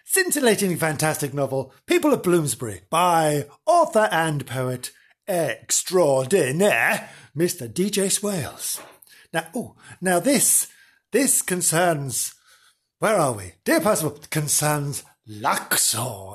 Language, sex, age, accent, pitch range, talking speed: English, male, 50-69, British, 135-200 Hz, 100 wpm